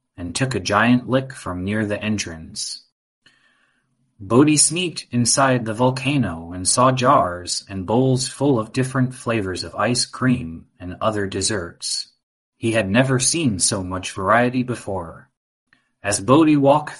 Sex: male